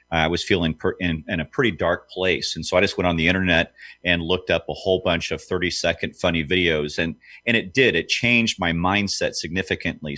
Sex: male